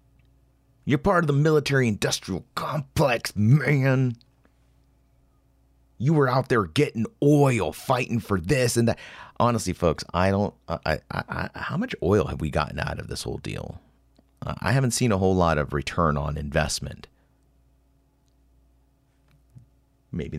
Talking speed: 140 wpm